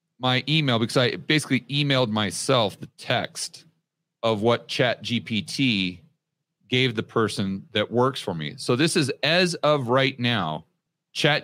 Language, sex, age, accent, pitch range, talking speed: English, male, 40-59, American, 115-150 Hz, 145 wpm